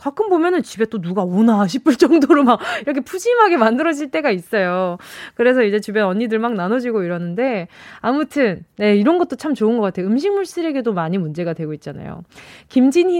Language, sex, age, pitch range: Korean, female, 20-39, 210-320 Hz